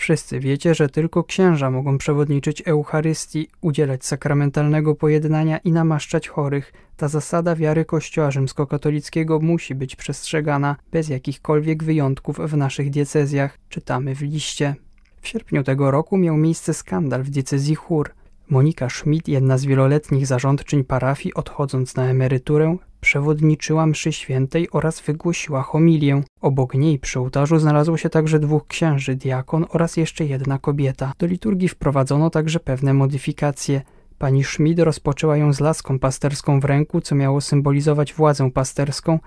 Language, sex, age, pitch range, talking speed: Polish, male, 20-39, 135-155 Hz, 140 wpm